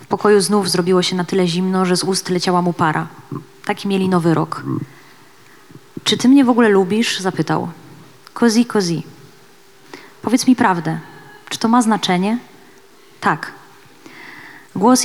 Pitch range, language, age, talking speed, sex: 170-200 Hz, Polish, 20-39, 160 wpm, female